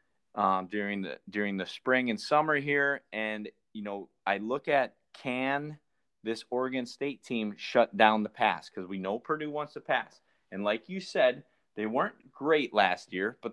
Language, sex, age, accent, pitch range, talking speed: English, male, 30-49, American, 100-130 Hz, 180 wpm